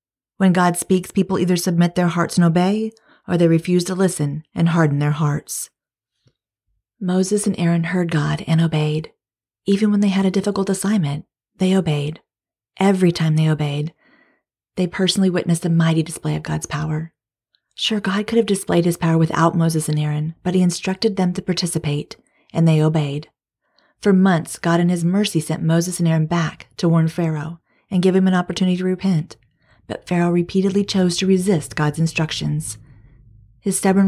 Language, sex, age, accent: English, female, 40-59, American